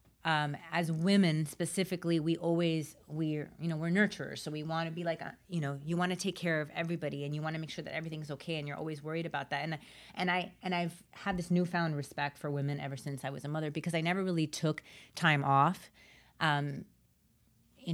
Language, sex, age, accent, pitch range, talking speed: English, female, 30-49, American, 145-175 Hz, 230 wpm